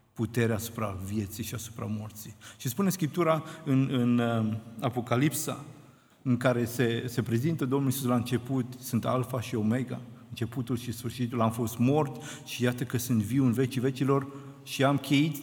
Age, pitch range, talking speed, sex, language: 50-69, 115-140 Hz, 165 wpm, male, Romanian